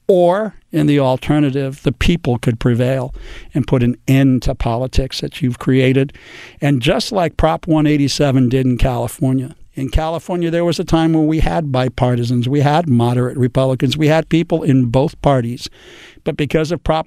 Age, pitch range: 60-79, 125-150 Hz